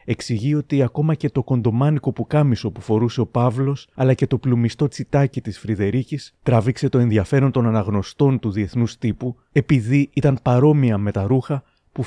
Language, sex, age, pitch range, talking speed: Greek, male, 30-49, 110-140 Hz, 165 wpm